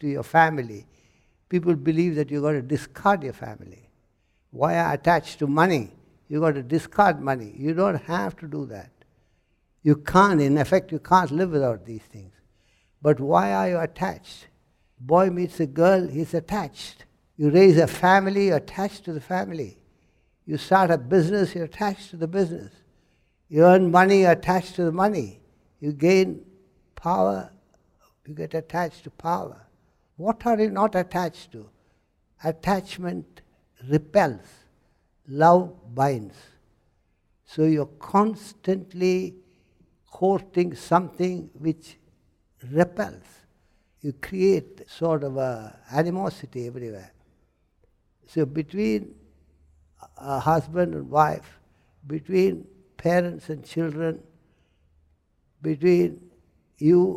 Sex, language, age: male, English, 60-79